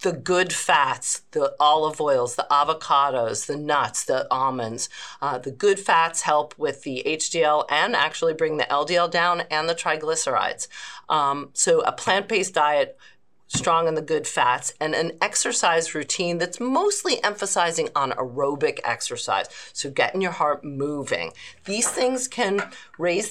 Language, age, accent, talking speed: English, 40-59, American, 150 wpm